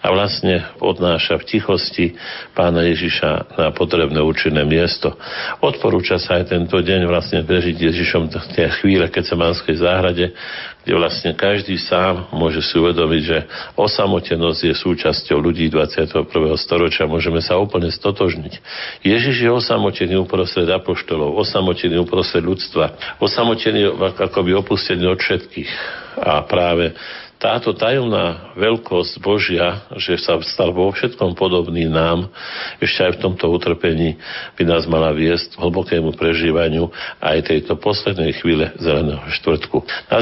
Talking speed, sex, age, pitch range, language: 130 wpm, male, 50-69, 80-95 Hz, Slovak